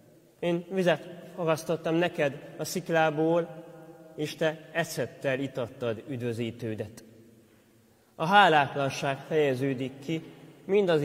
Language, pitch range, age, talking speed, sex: Hungarian, 140-165 Hz, 30-49, 85 wpm, male